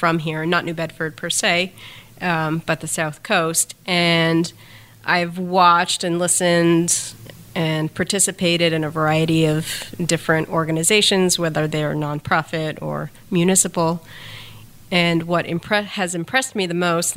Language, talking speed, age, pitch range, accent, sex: English, 135 wpm, 30-49, 150-175 Hz, American, female